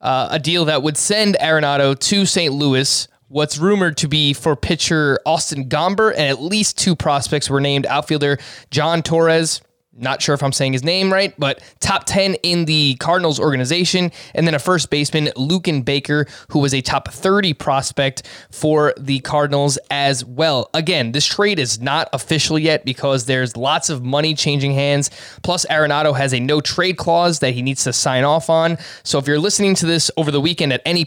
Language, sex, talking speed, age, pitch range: English, male, 195 wpm, 20-39, 135-165 Hz